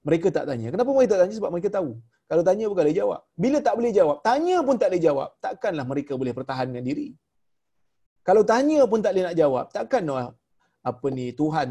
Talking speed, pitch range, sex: 205 wpm, 135-185 Hz, male